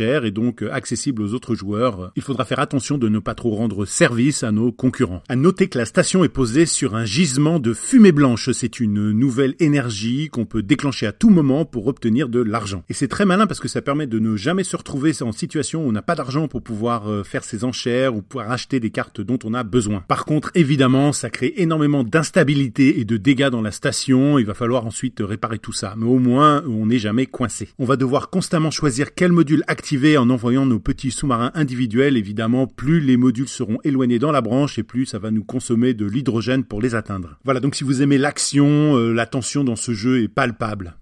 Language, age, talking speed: French, 40-59, 225 wpm